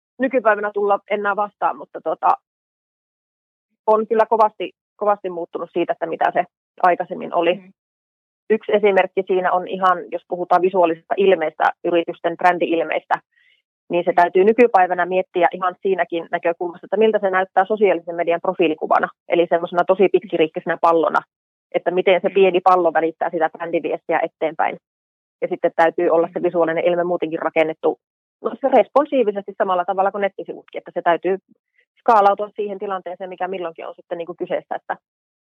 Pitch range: 170-195 Hz